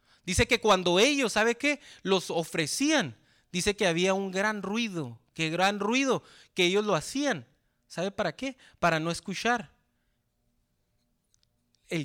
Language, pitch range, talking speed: Spanish, 160-215 Hz, 140 wpm